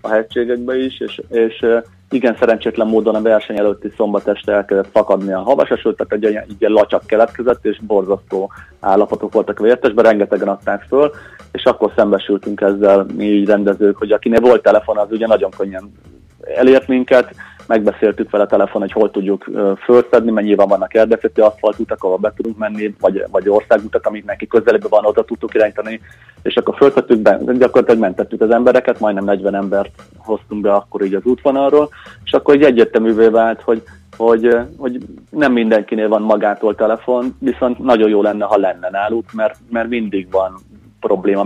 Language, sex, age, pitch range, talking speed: Hungarian, male, 30-49, 100-115 Hz, 170 wpm